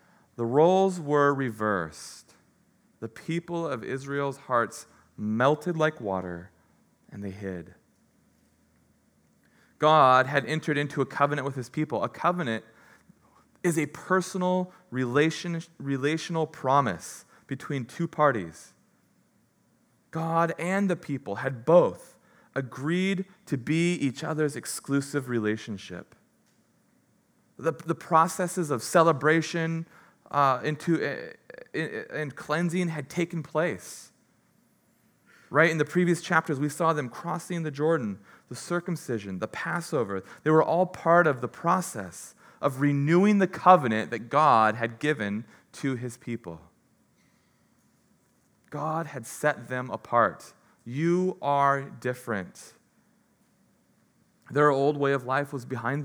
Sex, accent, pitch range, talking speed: male, American, 125-165 Hz, 115 wpm